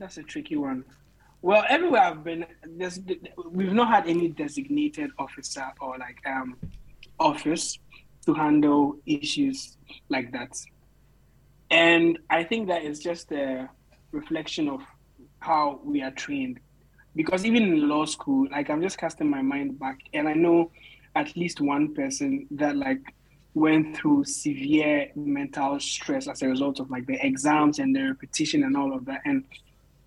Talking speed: 155 wpm